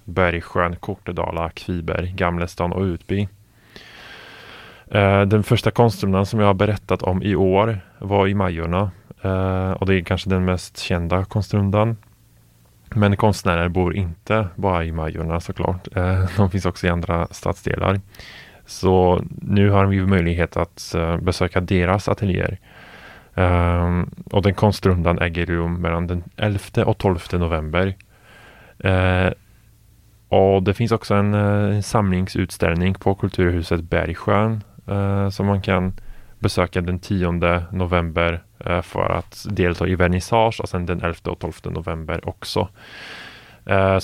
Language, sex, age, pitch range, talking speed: Swedish, male, 20-39, 90-100 Hz, 130 wpm